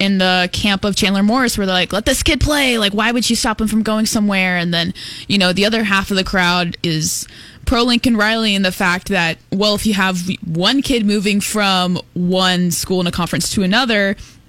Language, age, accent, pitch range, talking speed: English, 10-29, American, 180-220 Hz, 230 wpm